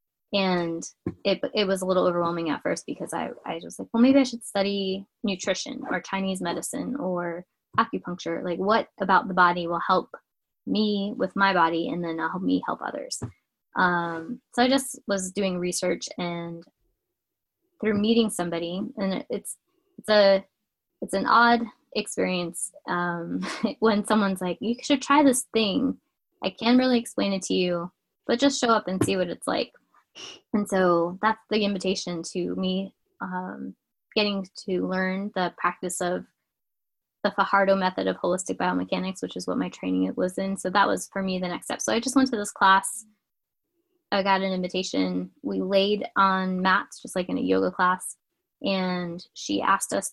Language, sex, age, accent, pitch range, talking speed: English, female, 20-39, American, 180-215 Hz, 175 wpm